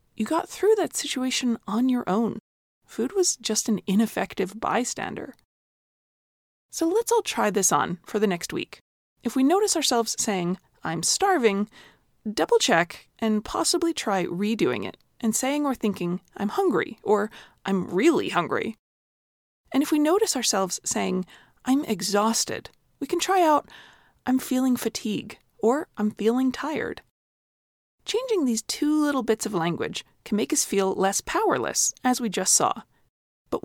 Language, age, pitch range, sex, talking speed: English, 20-39, 210-300 Hz, female, 150 wpm